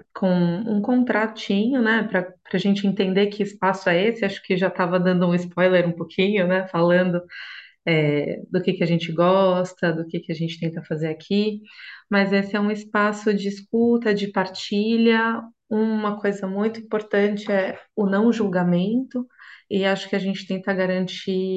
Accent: Brazilian